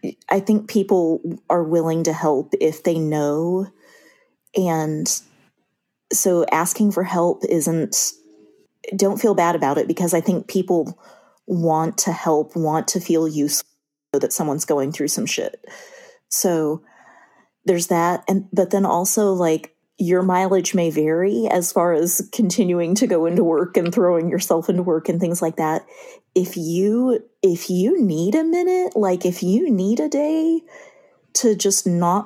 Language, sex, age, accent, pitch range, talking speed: English, female, 30-49, American, 170-215 Hz, 155 wpm